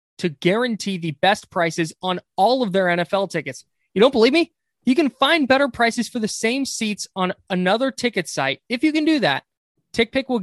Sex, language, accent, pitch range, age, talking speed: male, English, American, 175-250 Hz, 20-39, 200 wpm